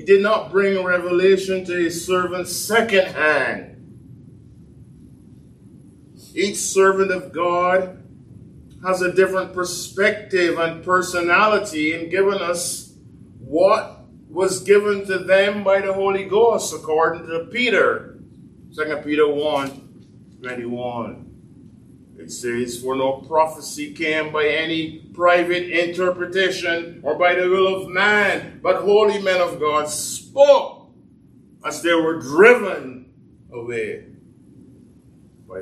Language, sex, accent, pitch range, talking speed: English, male, American, 160-195 Hz, 115 wpm